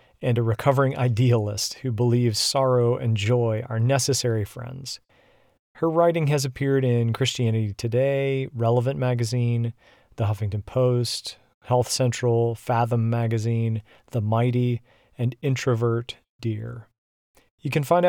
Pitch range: 115-135 Hz